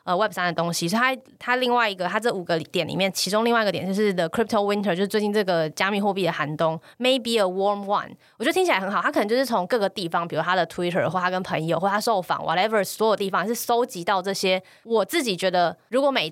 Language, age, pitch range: Chinese, 20-39, 175-220 Hz